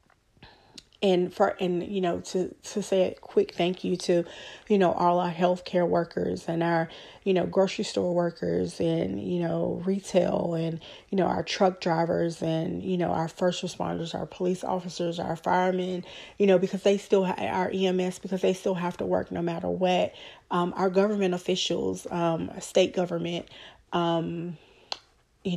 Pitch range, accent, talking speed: 170-190 Hz, American, 170 wpm